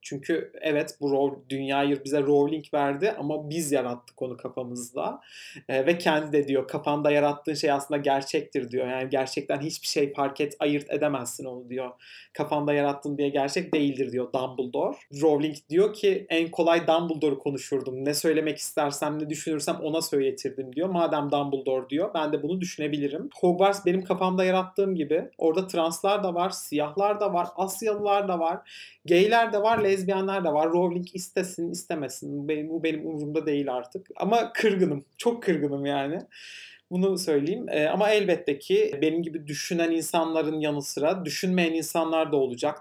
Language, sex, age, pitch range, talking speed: Turkish, male, 40-59, 140-170 Hz, 160 wpm